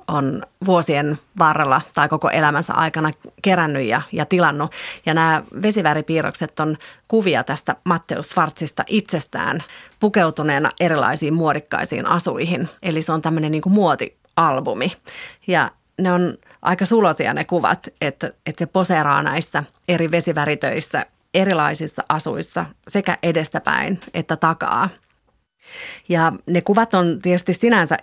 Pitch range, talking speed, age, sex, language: 155-180 Hz, 120 wpm, 30-49, female, Finnish